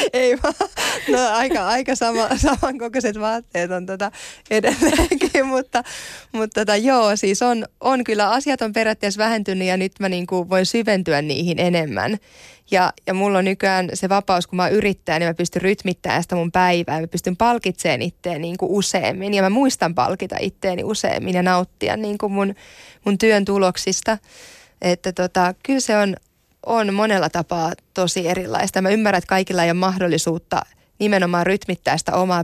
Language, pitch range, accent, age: Finnish, 175-210 Hz, native, 20-39